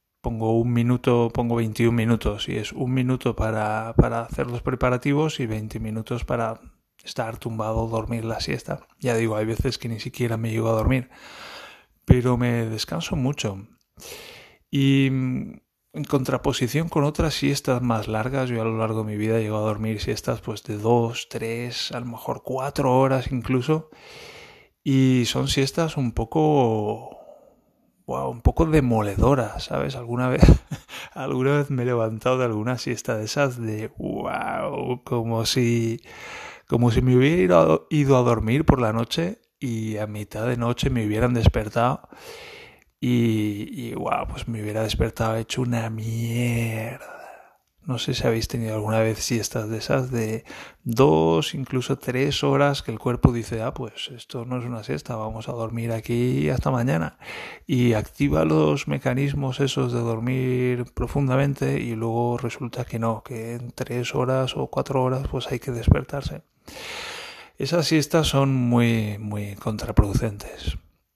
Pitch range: 110-130 Hz